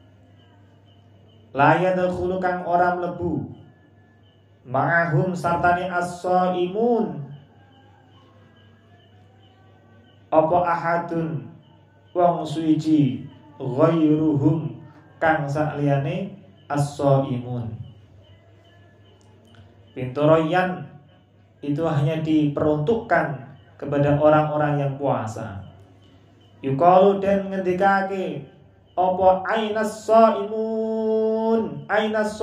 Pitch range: 110-180 Hz